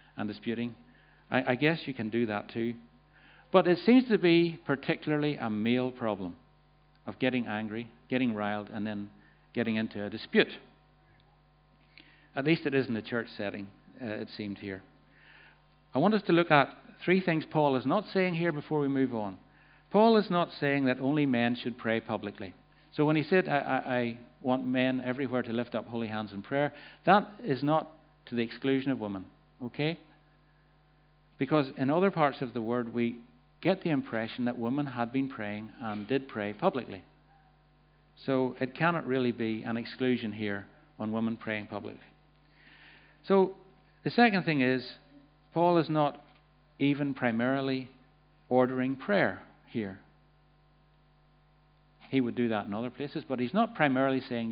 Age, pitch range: 60-79, 115-150 Hz